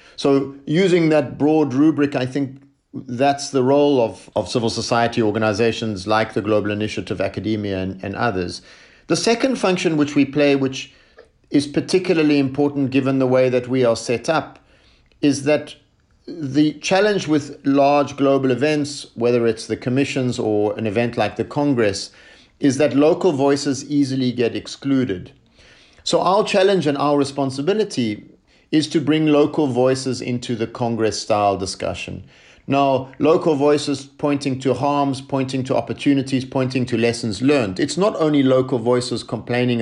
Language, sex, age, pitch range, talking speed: English, male, 50-69, 110-145 Hz, 150 wpm